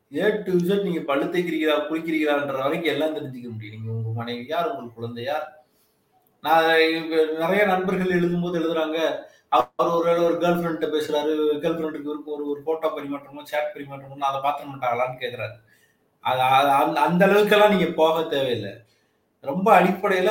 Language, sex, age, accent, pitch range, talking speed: Tamil, male, 30-49, native, 145-185 Hz, 120 wpm